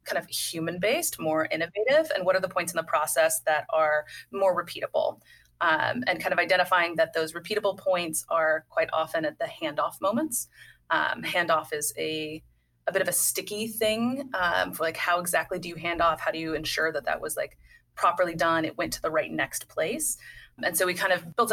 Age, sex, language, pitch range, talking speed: 20-39, female, English, 160-205 Hz, 210 wpm